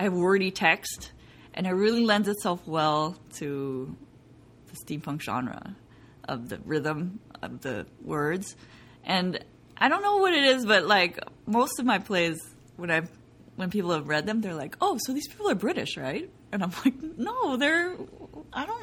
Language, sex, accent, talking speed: English, female, American, 180 wpm